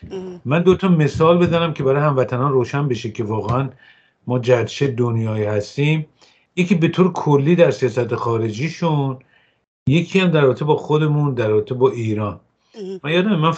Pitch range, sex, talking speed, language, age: 120-165 Hz, male, 150 wpm, English, 50-69